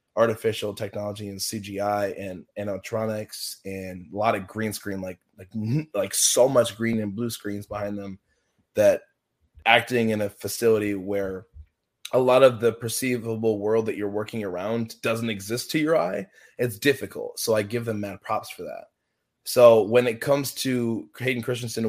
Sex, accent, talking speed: male, American, 170 wpm